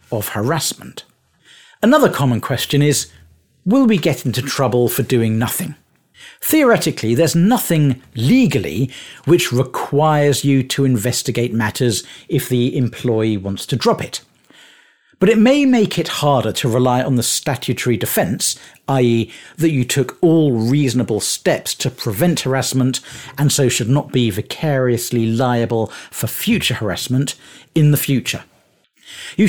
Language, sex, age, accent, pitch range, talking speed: English, male, 50-69, British, 120-160 Hz, 135 wpm